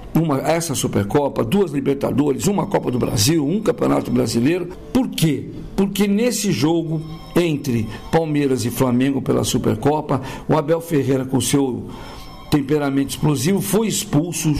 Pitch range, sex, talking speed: 135-165 Hz, male, 130 wpm